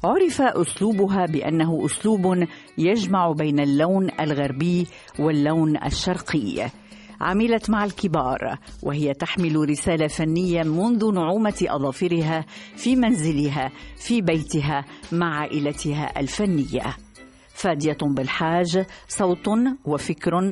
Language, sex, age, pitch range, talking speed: Arabic, female, 50-69, 155-215 Hz, 90 wpm